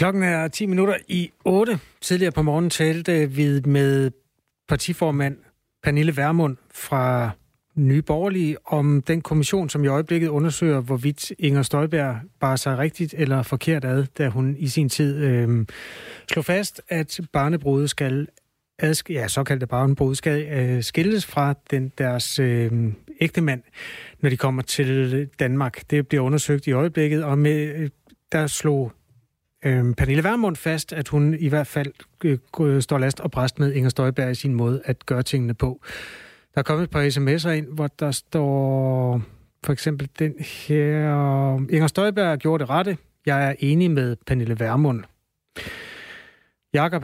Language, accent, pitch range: Danish, native, 135-155 Hz